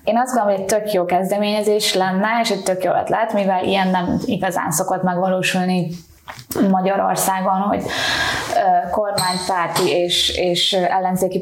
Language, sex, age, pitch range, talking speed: Hungarian, female, 20-39, 190-220 Hz, 135 wpm